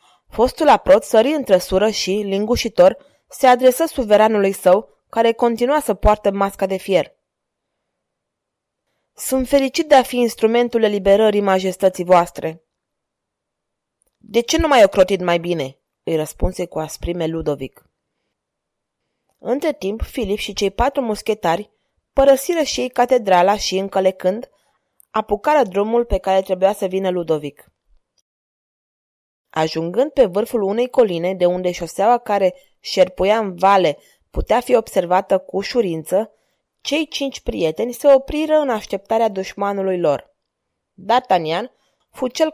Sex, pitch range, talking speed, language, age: female, 185-245 Hz, 125 wpm, Romanian, 20-39